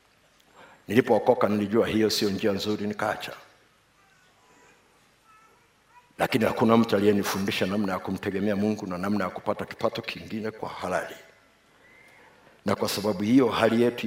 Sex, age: male, 50-69